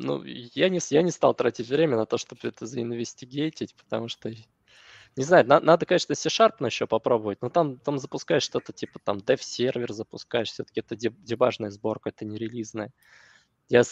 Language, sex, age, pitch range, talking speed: Russian, male, 20-39, 110-140 Hz, 175 wpm